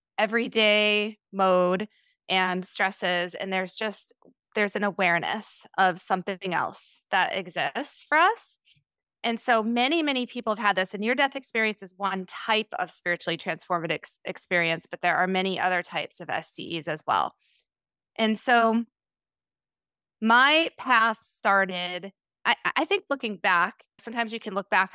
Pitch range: 180-225 Hz